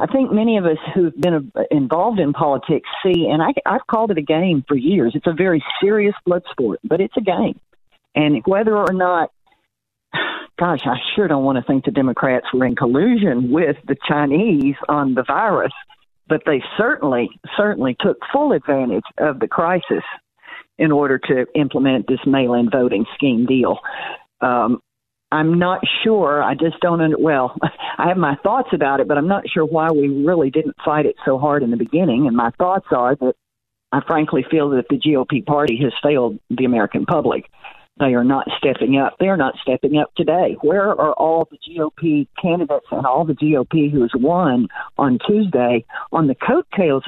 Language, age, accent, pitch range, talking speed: English, 40-59, American, 135-175 Hz, 185 wpm